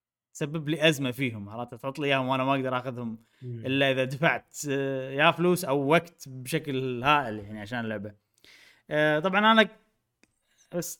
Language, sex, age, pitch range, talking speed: Arabic, male, 20-39, 125-170 Hz, 140 wpm